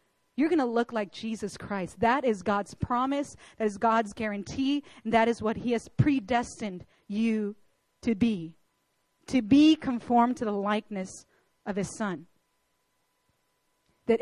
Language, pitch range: English, 205-255 Hz